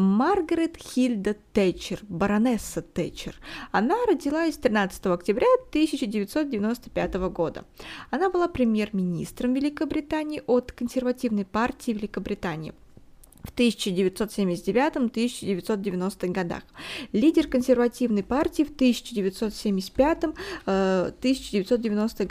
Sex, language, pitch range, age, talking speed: female, Russian, 210-280 Hz, 20-39, 75 wpm